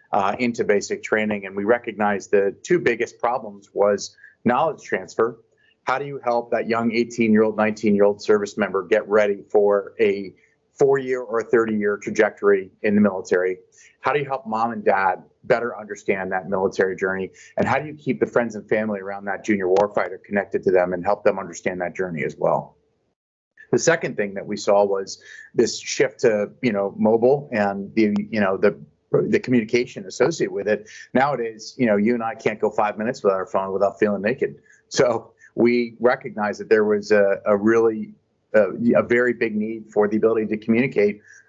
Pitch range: 100-125 Hz